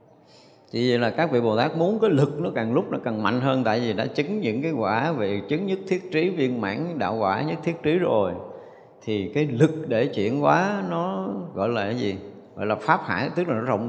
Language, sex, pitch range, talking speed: Vietnamese, male, 105-145 Hz, 235 wpm